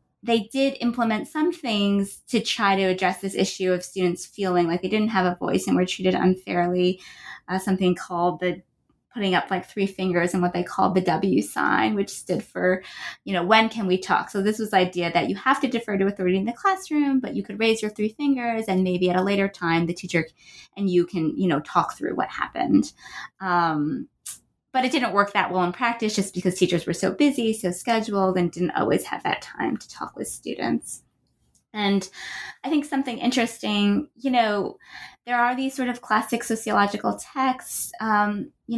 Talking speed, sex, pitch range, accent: 205 wpm, female, 180-220 Hz, American